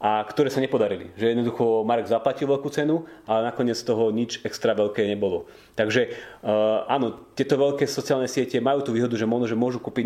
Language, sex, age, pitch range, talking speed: Slovak, male, 30-49, 105-135 Hz, 180 wpm